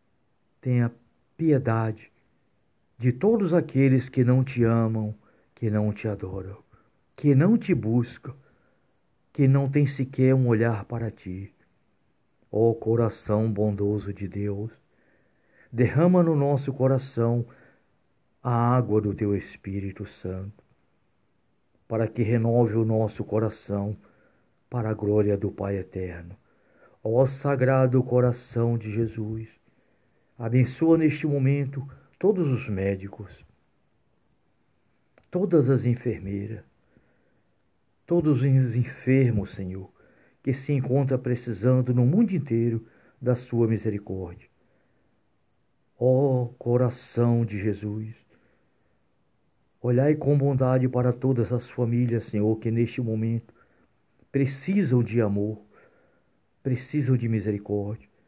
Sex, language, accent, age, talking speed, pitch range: male, English, Brazilian, 50-69, 105 wpm, 105-130 Hz